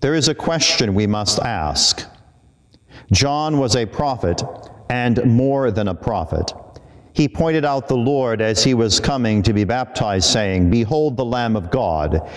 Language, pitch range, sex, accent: English, 110-135 Hz, male, American